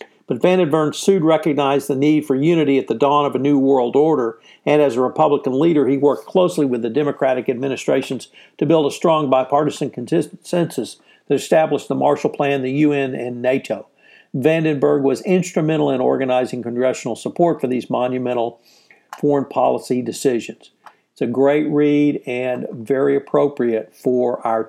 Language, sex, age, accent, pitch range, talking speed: English, male, 60-79, American, 125-160 Hz, 160 wpm